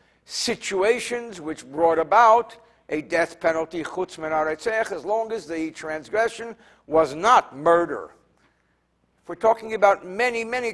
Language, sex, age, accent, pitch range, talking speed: English, male, 60-79, American, 160-220 Hz, 110 wpm